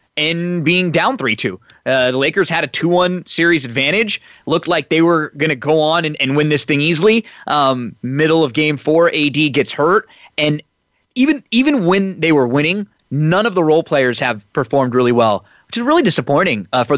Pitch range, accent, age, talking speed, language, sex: 130-180 Hz, American, 20-39, 200 wpm, English, male